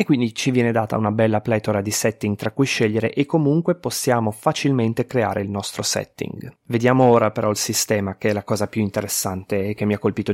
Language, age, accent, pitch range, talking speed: Italian, 30-49, native, 105-140 Hz, 215 wpm